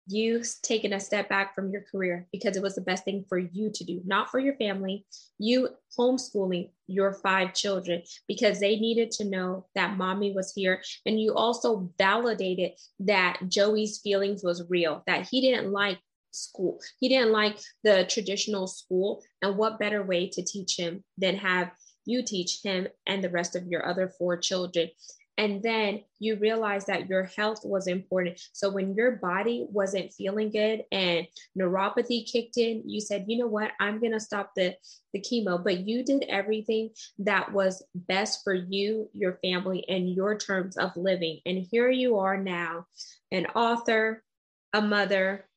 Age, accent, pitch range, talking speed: 20-39, American, 185-215 Hz, 175 wpm